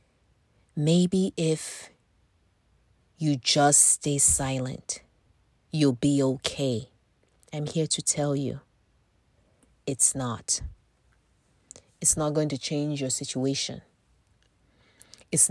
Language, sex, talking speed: English, female, 95 wpm